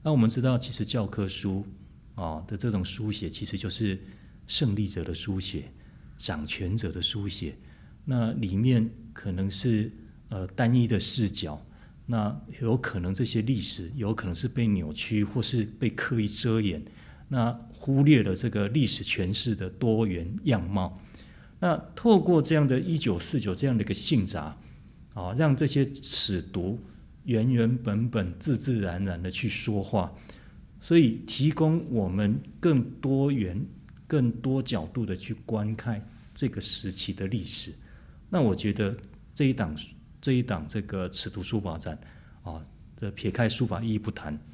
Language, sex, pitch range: Chinese, male, 95-120 Hz